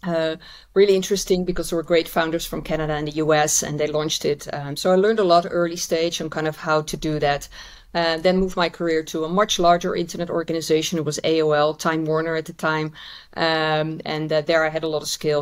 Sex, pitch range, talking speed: female, 150-170 Hz, 235 wpm